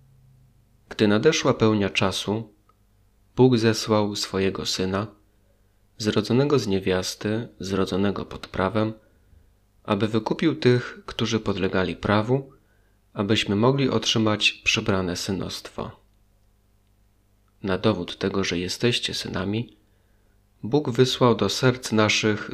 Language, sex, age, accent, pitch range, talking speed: Polish, male, 30-49, native, 100-110 Hz, 95 wpm